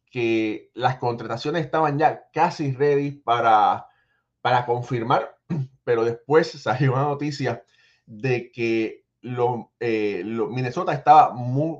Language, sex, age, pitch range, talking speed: Spanish, male, 30-49, 110-145 Hz, 115 wpm